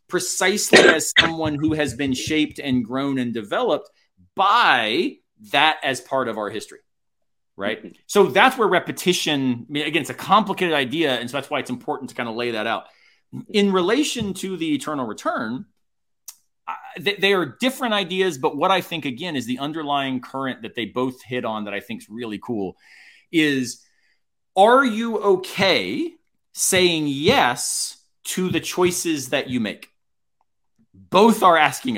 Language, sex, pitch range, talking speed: English, male, 125-190 Hz, 160 wpm